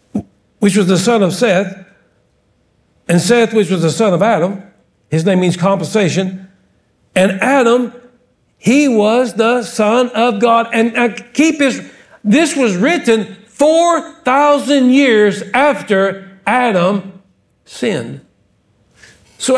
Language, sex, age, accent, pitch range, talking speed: English, male, 60-79, American, 185-240 Hz, 120 wpm